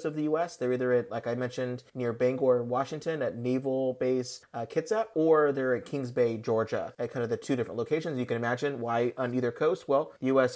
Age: 30-49